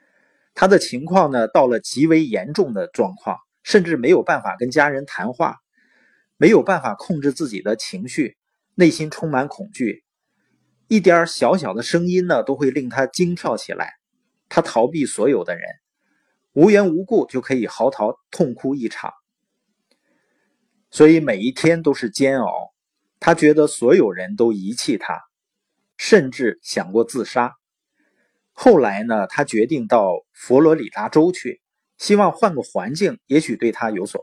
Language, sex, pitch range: Chinese, male, 135-210 Hz